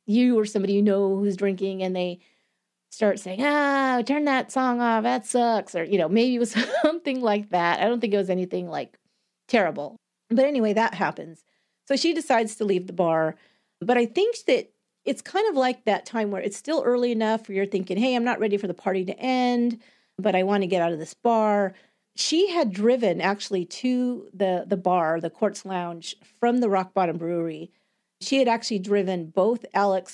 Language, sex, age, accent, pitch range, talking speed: English, female, 40-59, American, 180-235 Hz, 205 wpm